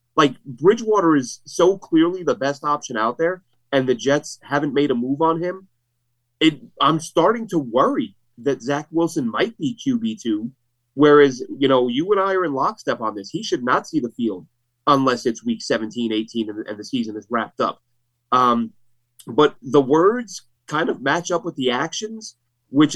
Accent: American